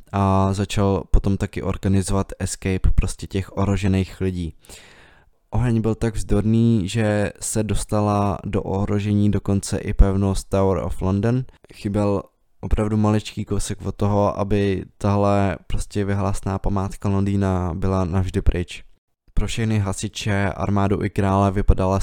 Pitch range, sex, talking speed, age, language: 95-100 Hz, male, 130 wpm, 20-39, Czech